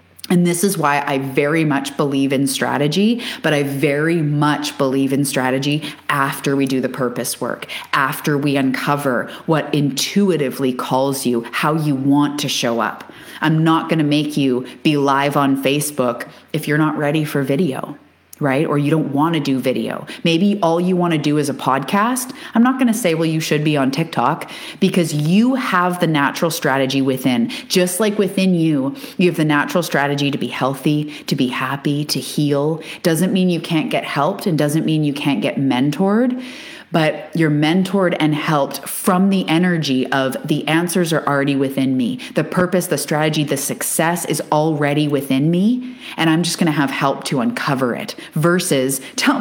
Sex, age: female, 30-49